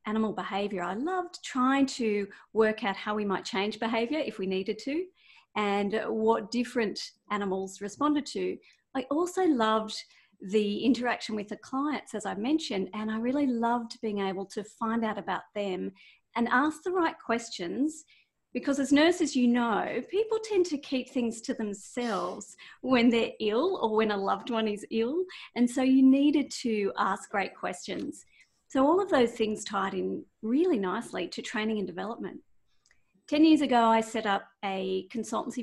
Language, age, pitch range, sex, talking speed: English, 40-59, 205-270 Hz, female, 170 wpm